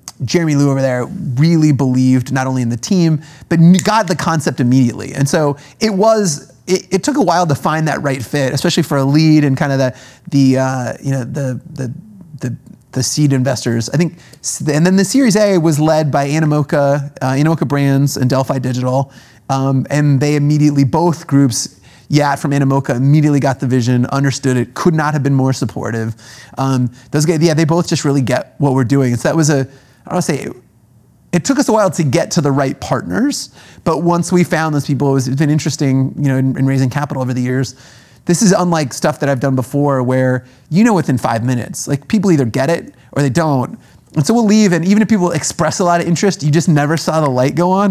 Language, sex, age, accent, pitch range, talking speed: English, male, 30-49, American, 130-170 Hz, 225 wpm